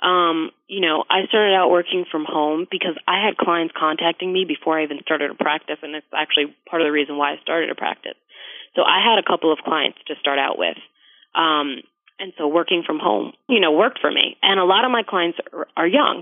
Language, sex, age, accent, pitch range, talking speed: English, female, 30-49, American, 150-185 Hz, 235 wpm